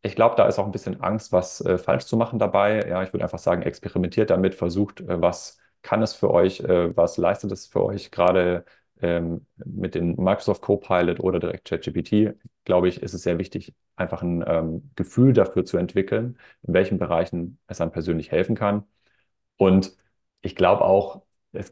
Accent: German